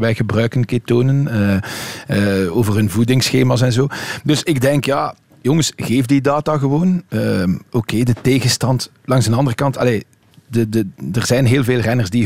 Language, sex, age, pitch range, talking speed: Dutch, male, 40-59, 115-135 Hz, 180 wpm